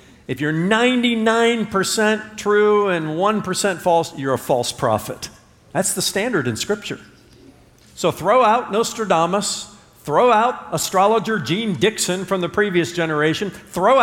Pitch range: 130-220 Hz